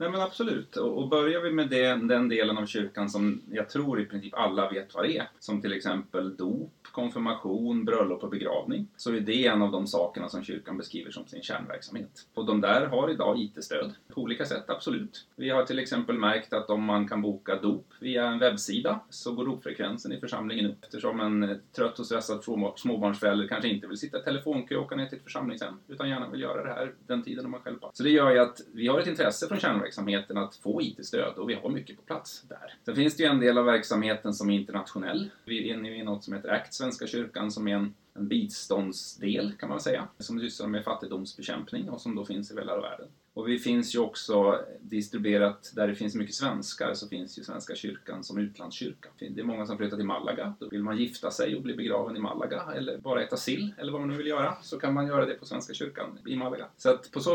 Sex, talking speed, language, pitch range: male, 235 wpm, Swedish, 105-130 Hz